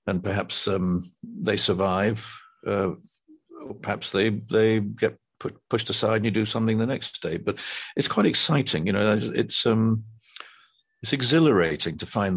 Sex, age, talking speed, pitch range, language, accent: male, 50-69, 160 wpm, 95-115 Hz, English, British